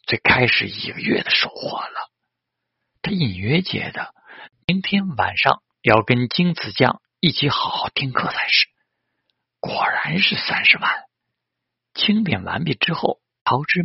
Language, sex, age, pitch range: Chinese, male, 50-69, 120-175 Hz